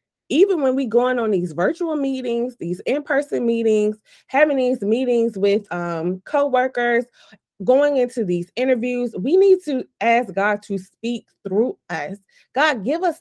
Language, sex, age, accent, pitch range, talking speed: English, female, 20-39, American, 195-260 Hz, 150 wpm